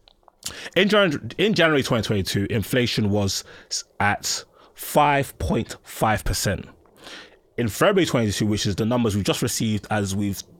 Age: 20-39